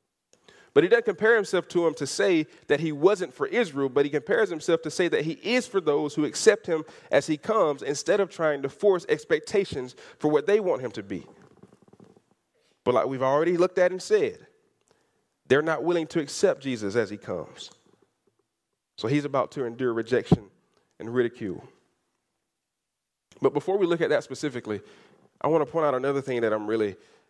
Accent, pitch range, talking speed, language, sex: American, 145-205 Hz, 190 wpm, English, male